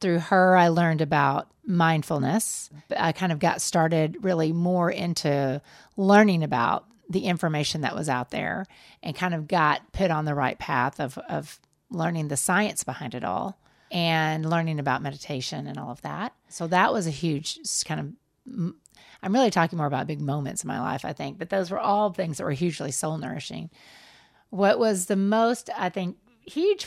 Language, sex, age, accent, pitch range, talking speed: English, female, 40-59, American, 160-210 Hz, 185 wpm